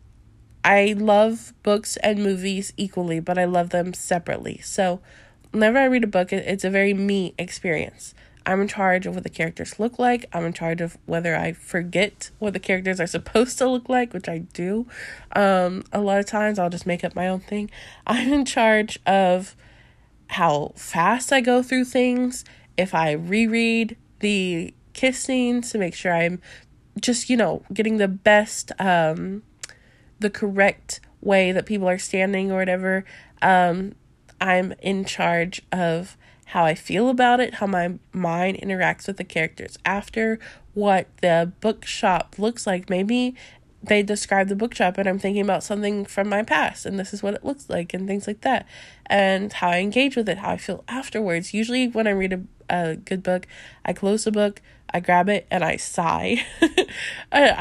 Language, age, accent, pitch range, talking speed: English, 20-39, American, 180-225 Hz, 180 wpm